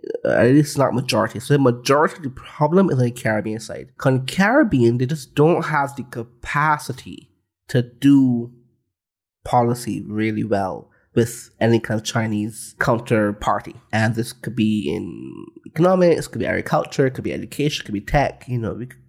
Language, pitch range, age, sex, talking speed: English, 110-140 Hz, 20-39, male, 175 wpm